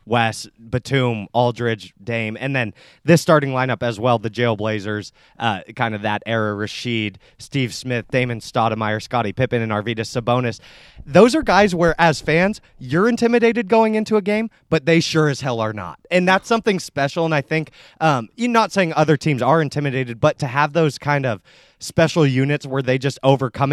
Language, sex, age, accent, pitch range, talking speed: English, male, 20-39, American, 120-160 Hz, 185 wpm